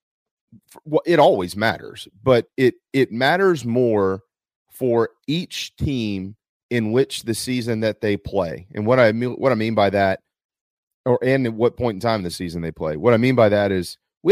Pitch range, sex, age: 105-125 Hz, male, 30-49